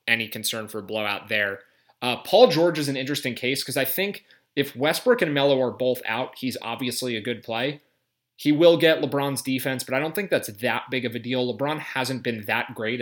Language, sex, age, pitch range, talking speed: English, male, 30-49, 115-145 Hz, 220 wpm